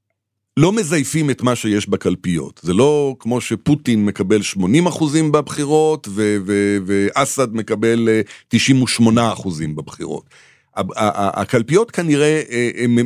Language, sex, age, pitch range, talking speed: Hebrew, male, 50-69, 100-130 Hz, 105 wpm